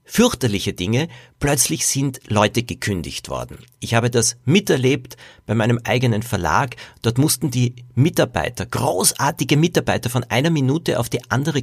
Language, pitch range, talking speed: German, 115-140 Hz, 140 wpm